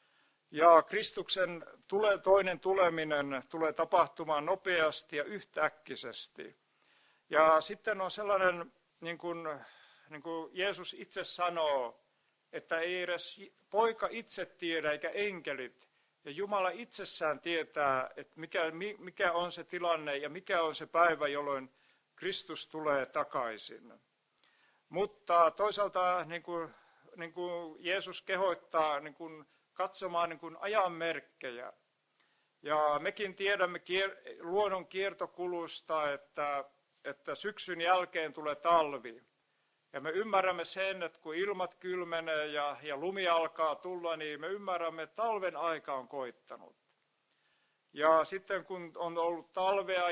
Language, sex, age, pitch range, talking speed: Finnish, male, 50-69, 160-185 Hz, 120 wpm